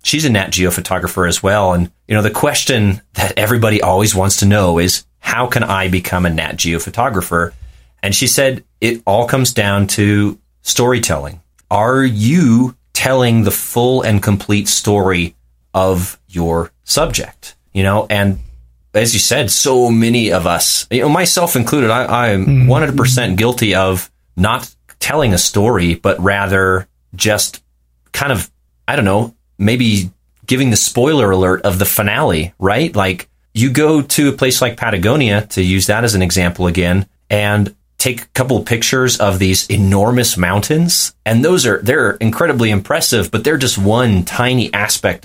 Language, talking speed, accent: English, 165 wpm, American